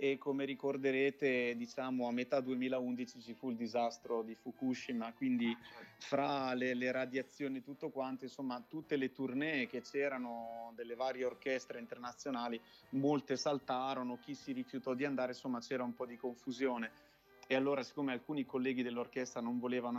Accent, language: native, Italian